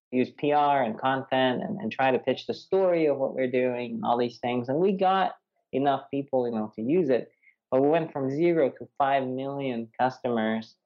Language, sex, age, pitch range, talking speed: English, male, 20-39, 125-170 Hz, 205 wpm